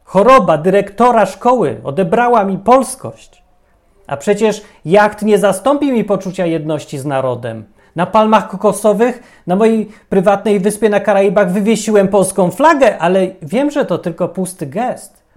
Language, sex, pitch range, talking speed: Polish, male, 170-220 Hz, 135 wpm